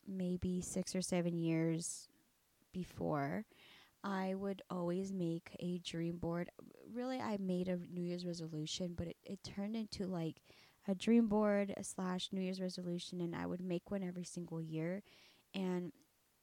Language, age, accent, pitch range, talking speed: English, 10-29, American, 175-200 Hz, 155 wpm